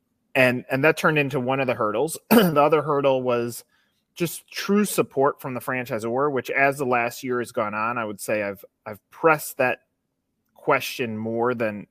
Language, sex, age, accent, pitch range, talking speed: English, male, 30-49, American, 115-145 Hz, 185 wpm